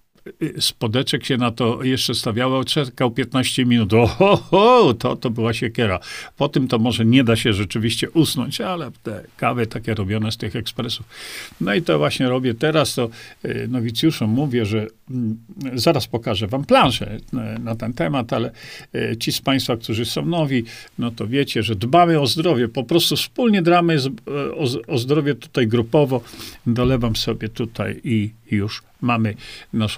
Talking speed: 155 wpm